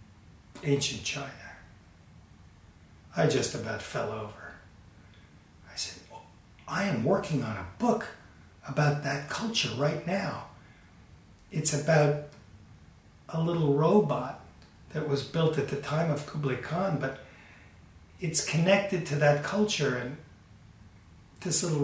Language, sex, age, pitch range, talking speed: English, male, 40-59, 100-150 Hz, 120 wpm